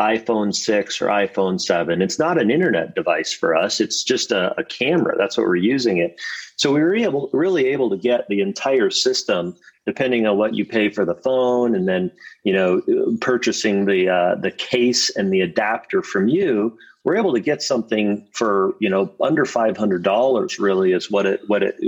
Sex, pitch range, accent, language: male, 105-145 Hz, American, English